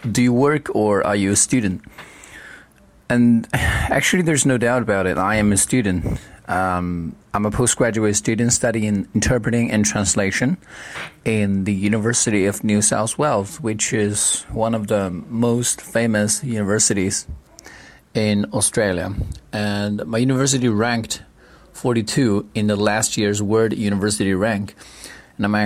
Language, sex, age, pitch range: Chinese, male, 30-49, 105-120 Hz